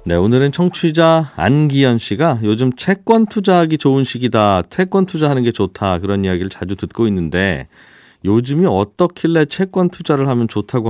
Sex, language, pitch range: male, Korean, 105-160 Hz